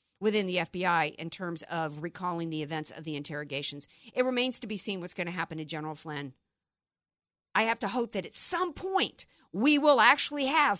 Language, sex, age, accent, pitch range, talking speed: English, female, 50-69, American, 170-235 Hz, 200 wpm